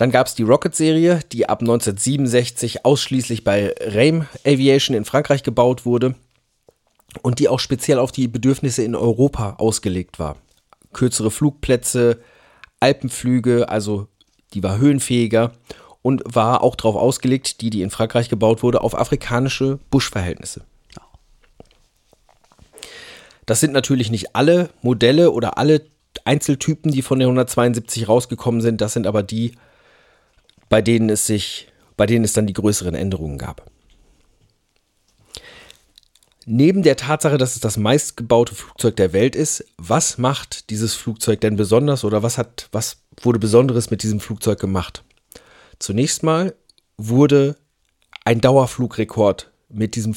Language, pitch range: German, 110-135 Hz